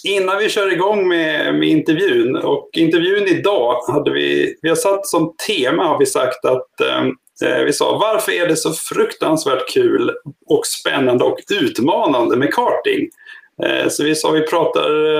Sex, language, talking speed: male, Swedish, 170 wpm